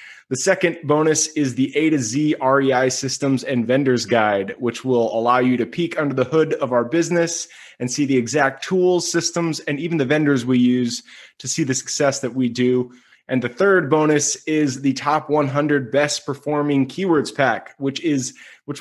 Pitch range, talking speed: 125-150 Hz, 185 wpm